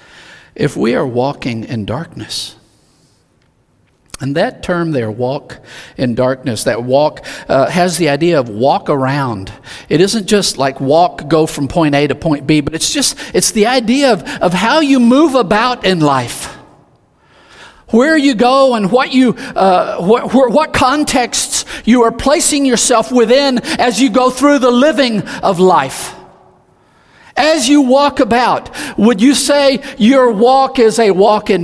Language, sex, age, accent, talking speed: English, male, 50-69, American, 160 wpm